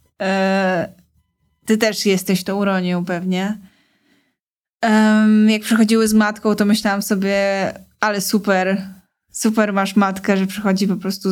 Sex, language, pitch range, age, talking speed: female, Polish, 190-215 Hz, 20-39, 120 wpm